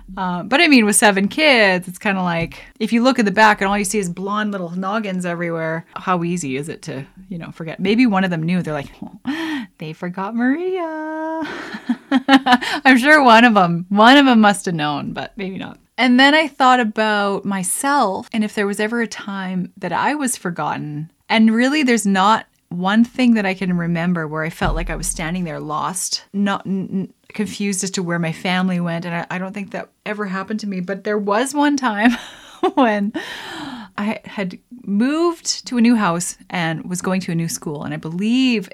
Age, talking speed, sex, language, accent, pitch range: 20-39, 210 wpm, female, English, American, 180-235 Hz